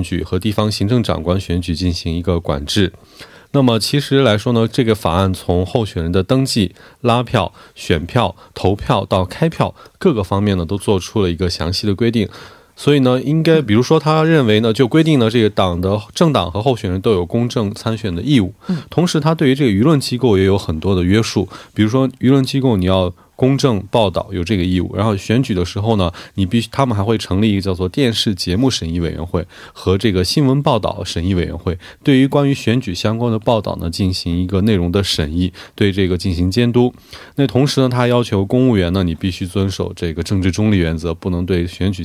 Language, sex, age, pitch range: Korean, male, 20-39, 90-125 Hz